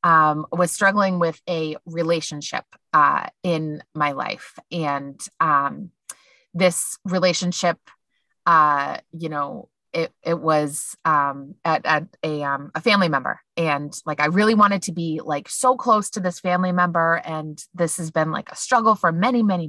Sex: female